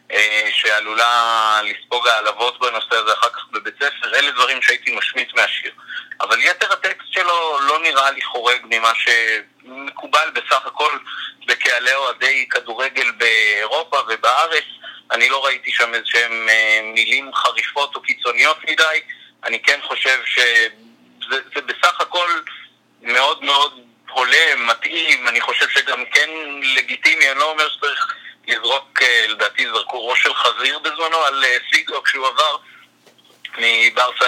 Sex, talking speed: male, 130 wpm